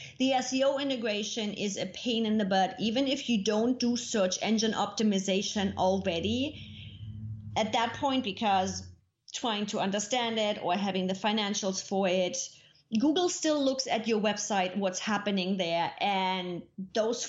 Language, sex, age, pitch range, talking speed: English, female, 30-49, 190-240 Hz, 150 wpm